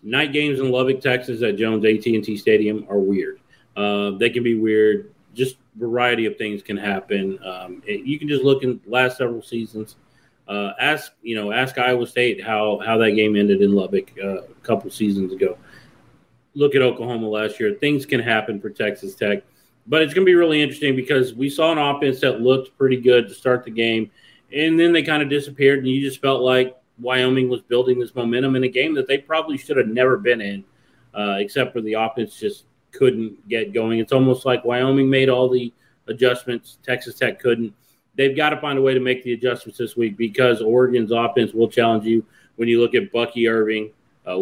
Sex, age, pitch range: male, 30-49, 110-130 Hz